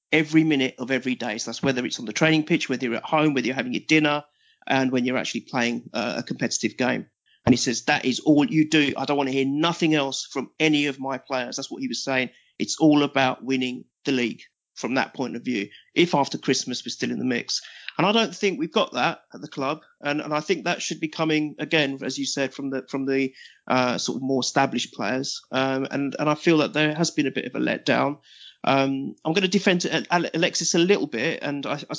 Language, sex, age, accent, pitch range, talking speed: English, male, 30-49, British, 130-155 Hz, 250 wpm